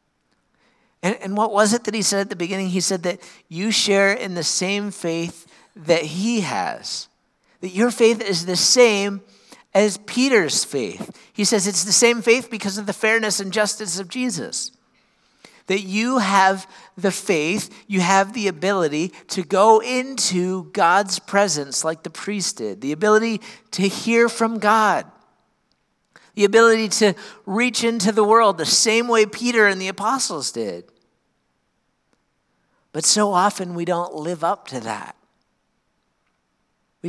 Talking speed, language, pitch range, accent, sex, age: 150 wpm, English, 175-220 Hz, American, male, 50-69